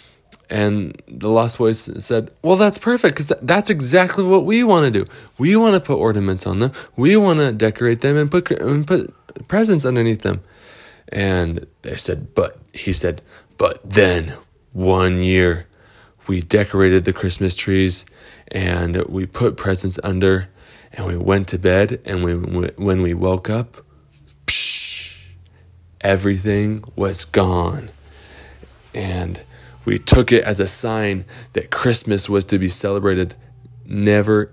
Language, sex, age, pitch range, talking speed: English, male, 20-39, 95-140 Hz, 145 wpm